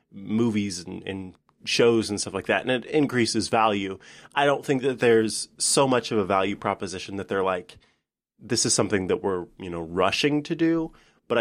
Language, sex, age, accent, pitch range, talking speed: English, male, 30-49, American, 110-165 Hz, 195 wpm